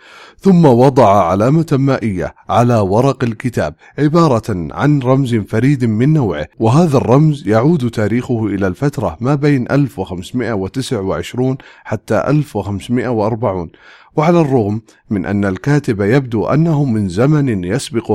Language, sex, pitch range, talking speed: English, male, 105-140 Hz, 110 wpm